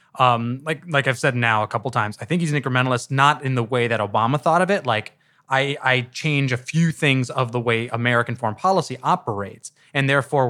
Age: 20-39